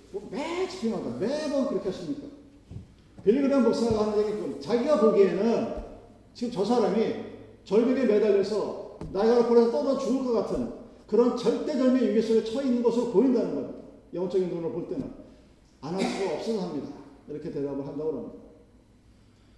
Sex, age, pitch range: male, 40-59, 185-240 Hz